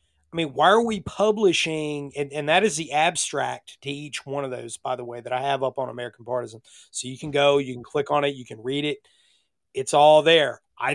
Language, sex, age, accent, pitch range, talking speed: English, male, 30-49, American, 130-160 Hz, 240 wpm